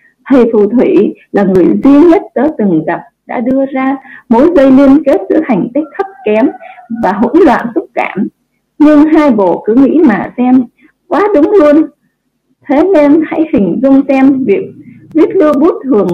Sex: female